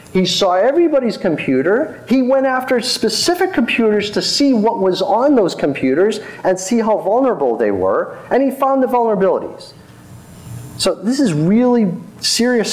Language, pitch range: English, 150-230 Hz